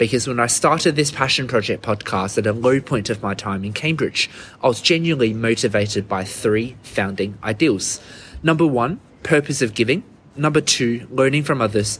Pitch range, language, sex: 105-135 Hz, English, male